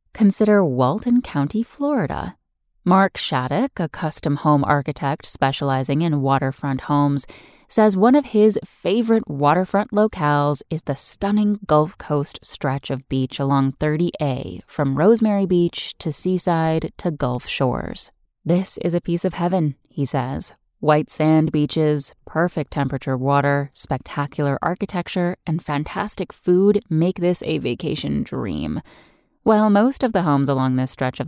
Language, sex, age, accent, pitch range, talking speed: English, female, 10-29, American, 140-190 Hz, 140 wpm